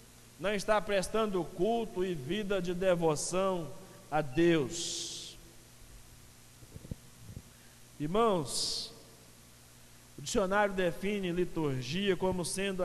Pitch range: 160-225 Hz